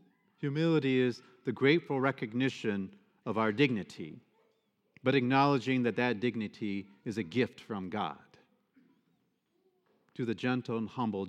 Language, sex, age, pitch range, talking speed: English, male, 50-69, 105-140 Hz, 120 wpm